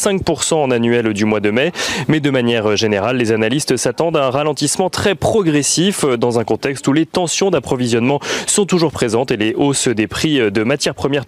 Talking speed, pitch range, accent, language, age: 190 wpm, 115-150 Hz, French, French, 30-49